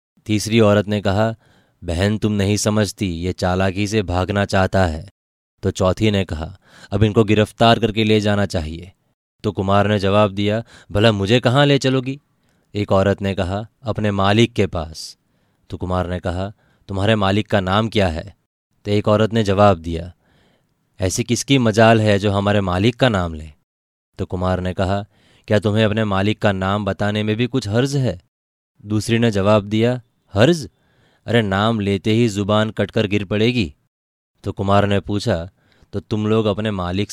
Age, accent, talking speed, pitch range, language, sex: 20-39, native, 175 wpm, 95-110 Hz, Hindi, male